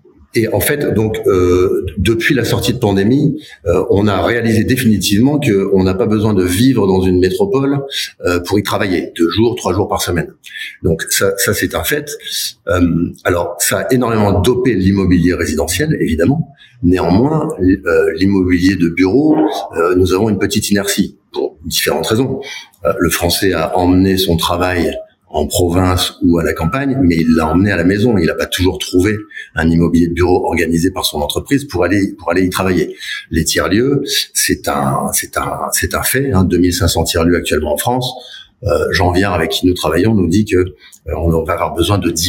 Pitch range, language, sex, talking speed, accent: 90-115 Hz, French, male, 190 wpm, French